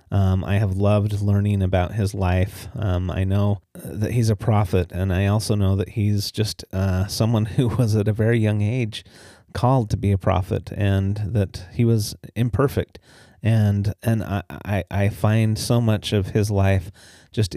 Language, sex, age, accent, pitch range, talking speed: English, male, 30-49, American, 95-110 Hz, 180 wpm